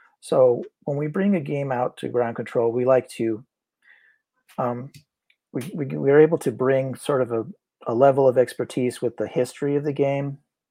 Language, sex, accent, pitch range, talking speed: English, male, American, 110-140 Hz, 190 wpm